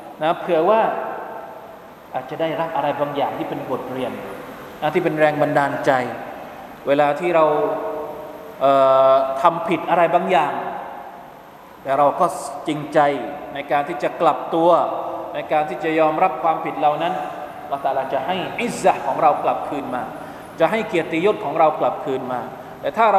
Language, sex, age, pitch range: Thai, male, 20-39, 150-185 Hz